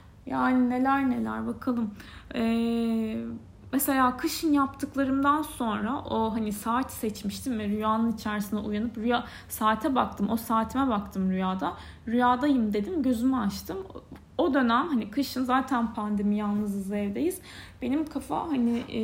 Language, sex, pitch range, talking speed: Turkish, female, 205-255 Hz, 125 wpm